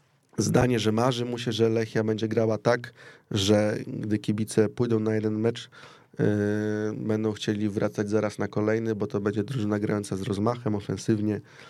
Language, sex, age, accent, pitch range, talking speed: Polish, male, 20-39, native, 110-125 Hz, 165 wpm